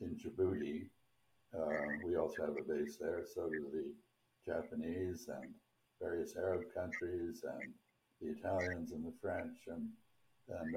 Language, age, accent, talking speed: English, 60-79, American, 140 wpm